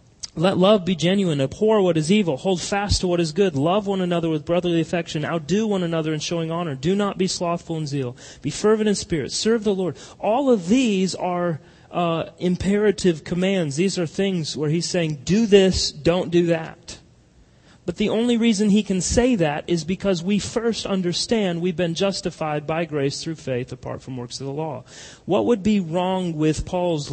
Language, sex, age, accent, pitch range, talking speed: English, male, 30-49, American, 125-180 Hz, 195 wpm